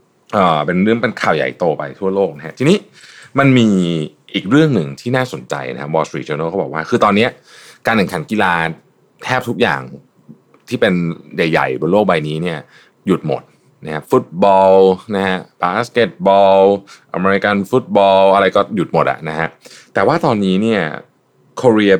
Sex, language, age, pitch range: male, Thai, 20-39, 80-110 Hz